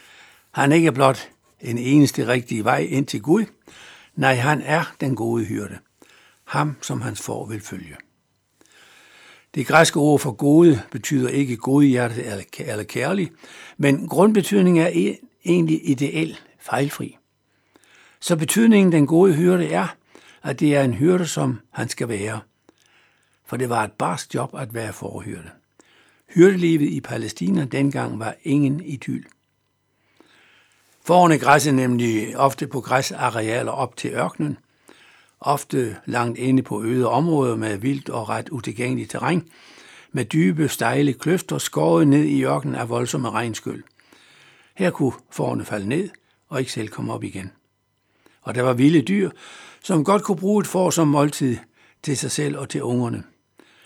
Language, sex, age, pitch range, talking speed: Danish, male, 60-79, 120-160 Hz, 150 wpm